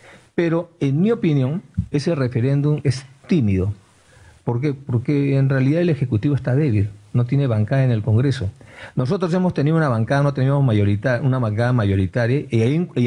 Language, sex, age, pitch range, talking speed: Spanish, male, 50-69, 115-150 Hz, 160 wpm